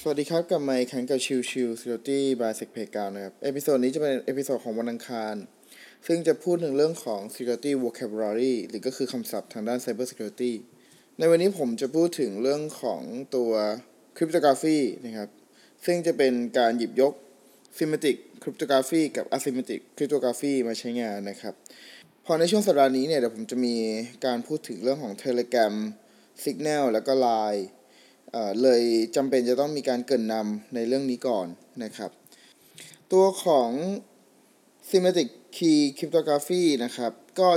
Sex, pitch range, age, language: male, 120-165 Hz, 20-39, Thai